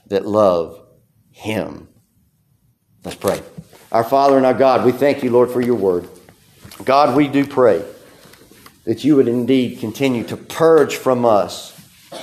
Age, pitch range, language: 50-69, 110-135 Hz, English